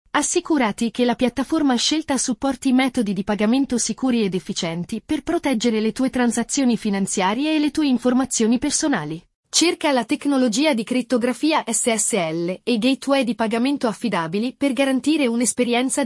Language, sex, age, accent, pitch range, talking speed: Italian, female, 30-49, native, 215-270 Hz, 140 wpm